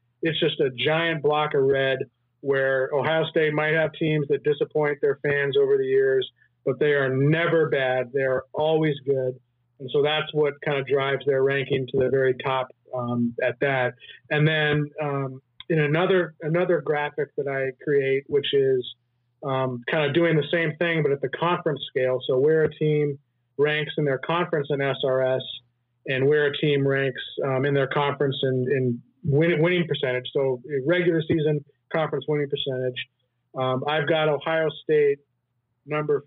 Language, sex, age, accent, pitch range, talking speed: English, male, 30-49, American, 135-160 Hz, 170 wpm